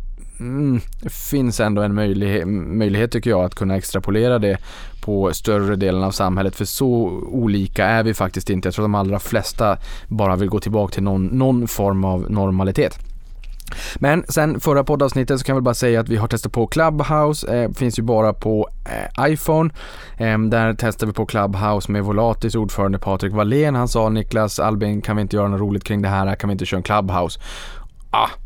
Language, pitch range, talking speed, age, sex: Swedish, 95-115 Hz, 195 wpm, 20-39, male